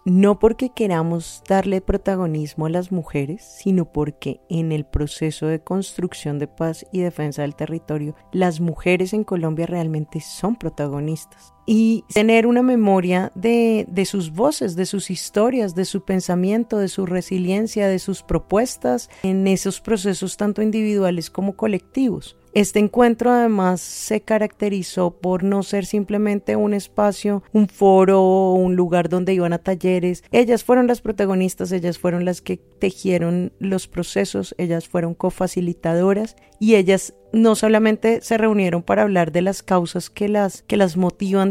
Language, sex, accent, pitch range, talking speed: Spanish, female, Colombian, 175-205 Hz, 150 wpm